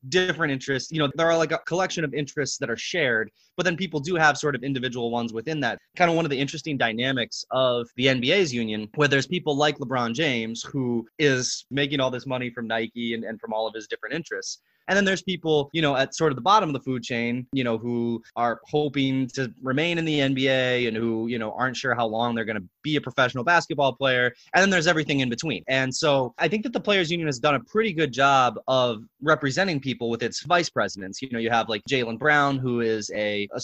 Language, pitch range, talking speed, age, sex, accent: English, 115-150 Hz, 245 wpm, 20-39, male, American